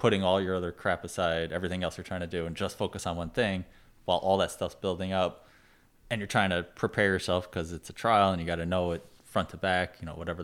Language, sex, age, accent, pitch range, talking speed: English, male, 20-39, American, 85-95 Hz, 265 wpm